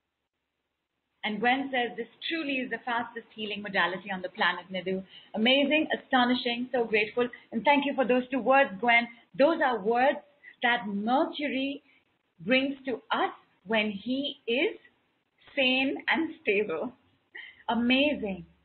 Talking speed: 130 wpm